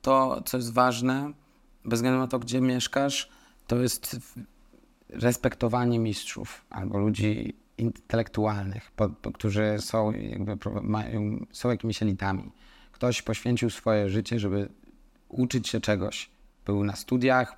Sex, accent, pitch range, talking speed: male, native, 110-130 Hz, 115 wpm